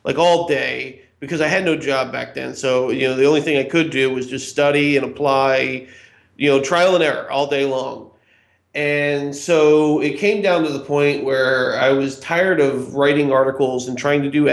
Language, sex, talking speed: English, male, 210 wpm